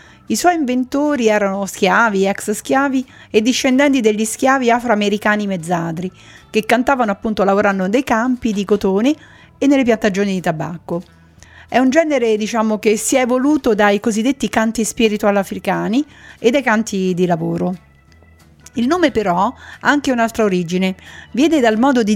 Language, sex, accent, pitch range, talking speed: Italian, female, native, 195-255 Hz, 150 wpm